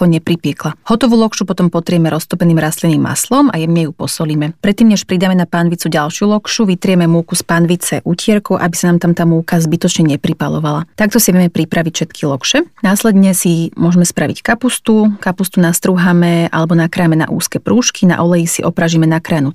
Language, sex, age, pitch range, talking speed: Slovak, female, 30-49, 165-195 Hz, 170 wpm